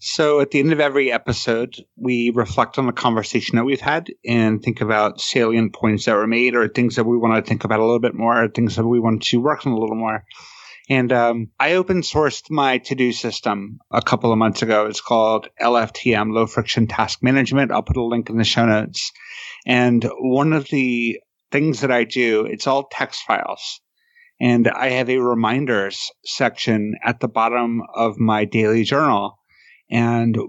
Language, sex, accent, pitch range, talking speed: English, male, American, 115-130 Hz, 195 wpm